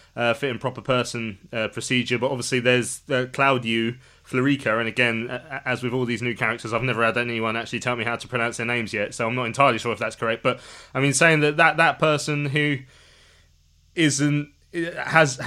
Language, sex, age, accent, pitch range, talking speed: English, male, 20-39, British, 120-155 Hz, 200 wpm